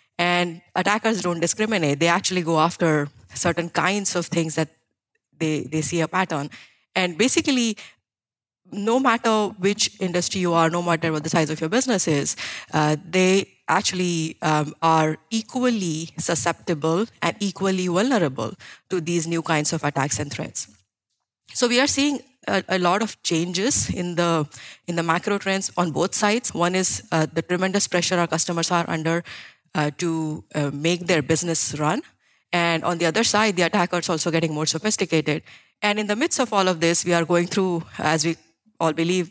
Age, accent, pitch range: 20-39, Indian, 160-195 Hz